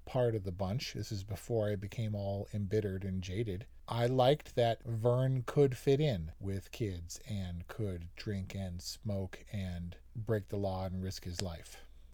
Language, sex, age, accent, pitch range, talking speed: English, male, 40-59, American, 105-125 Hz, 175 wpm